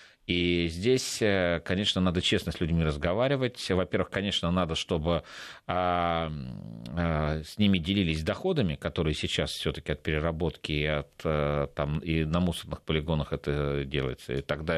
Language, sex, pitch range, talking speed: Russian, male, 80-95 Hz, 135 wpm